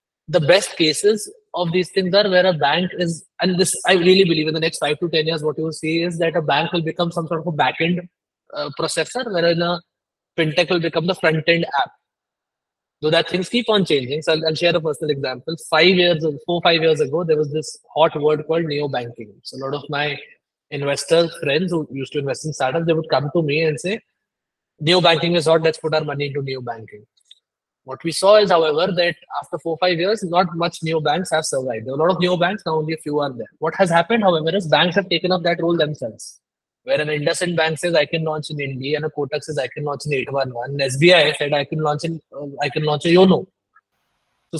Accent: Indian